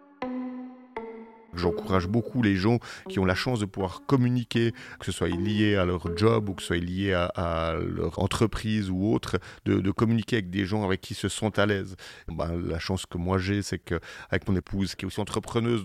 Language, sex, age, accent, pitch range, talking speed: French, male, 40-59, French, 95-115 Hz, 215 wpm